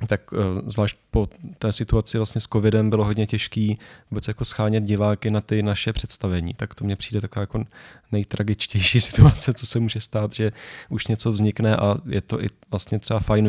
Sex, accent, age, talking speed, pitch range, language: male, native, 20-39, 175 wpm, 105-115 Hz, Czech